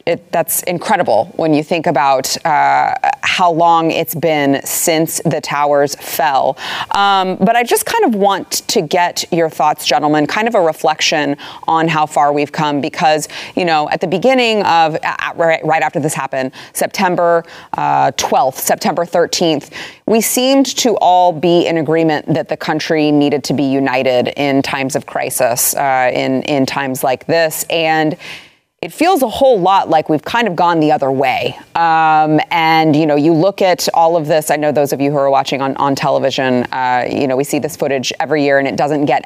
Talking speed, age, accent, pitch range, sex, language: 190 wpm, 30-49, American, 145-180 Hz, female, English